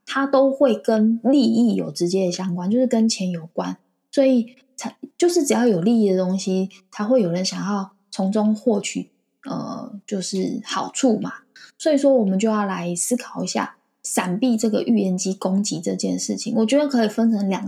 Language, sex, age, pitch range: Chinese, female, 20-39, 195-240 Hz